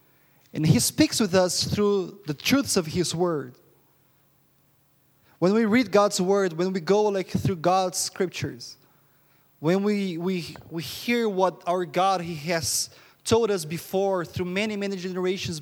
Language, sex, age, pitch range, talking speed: English, male, 20-39, 160-205 Hz, 155 wpm